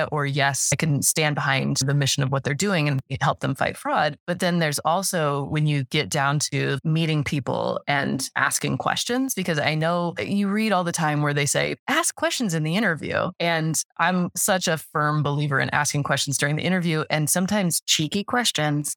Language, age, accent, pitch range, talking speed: English, 20-39, American, 150-180 Hz, 200 wpm